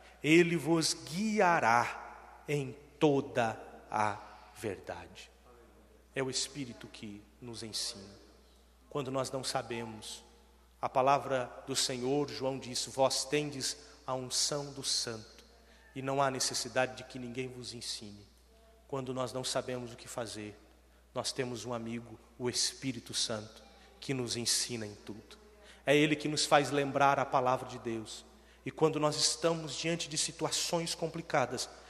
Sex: male